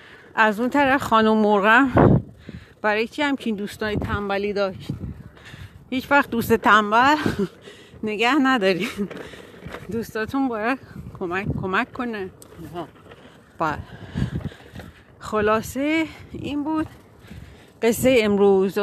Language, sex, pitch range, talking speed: Persian, female, 200-235 Hz, 90 wpm